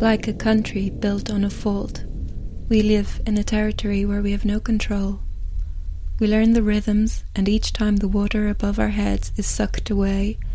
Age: 20-39